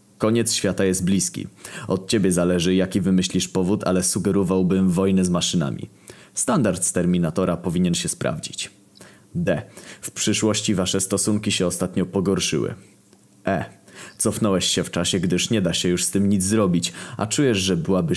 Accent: native